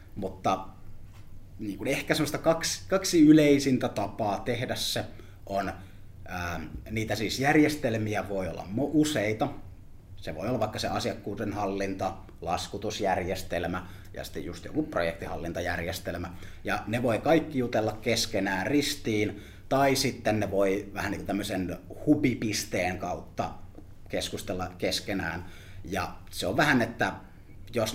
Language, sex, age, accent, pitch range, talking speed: Finnish, male, 30-49, native, 95-115 Hz, 110 wpm